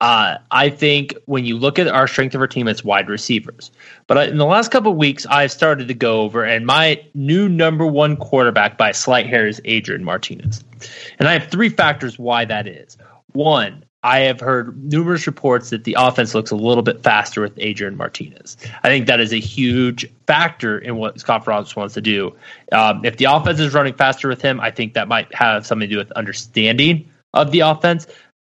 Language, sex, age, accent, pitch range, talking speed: English, male, 20-39, American, 115-150 Hz, 215 wpm